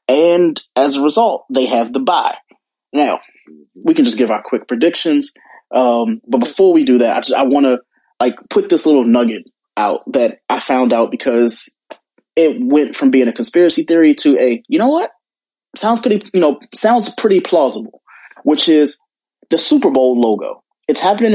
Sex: male